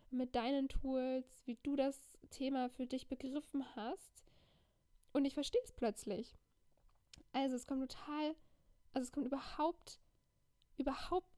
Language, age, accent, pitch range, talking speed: German, 10-29, German, 240-275 Hz, 130 wpm